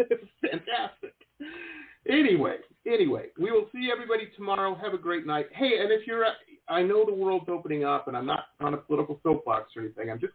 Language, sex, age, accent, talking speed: English, male, 50-69, American, 195 wpm